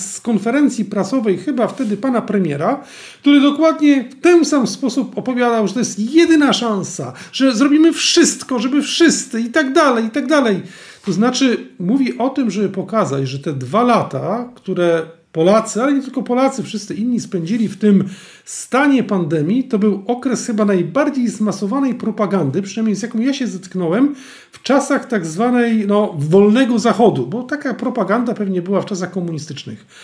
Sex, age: male, 40-59